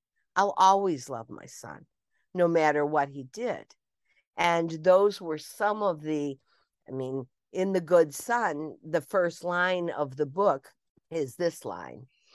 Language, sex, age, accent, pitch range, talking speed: English, female, 50-69, American, 135-170 Hz, 150 wpm